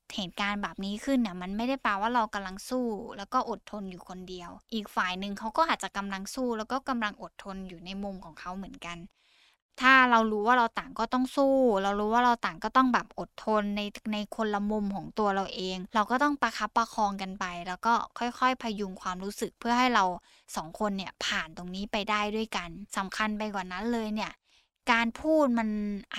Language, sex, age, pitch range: Thai, female, 10-29, 195-245 Hz